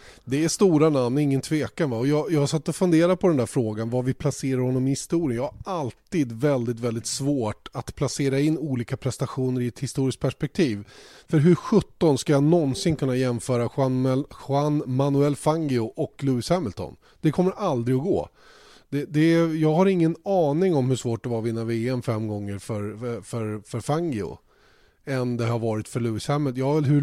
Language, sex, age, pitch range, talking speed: Swedish, male, 30-49, 120-150 Hz, 195 wpm